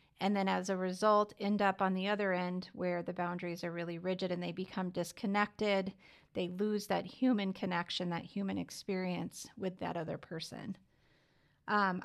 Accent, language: American, English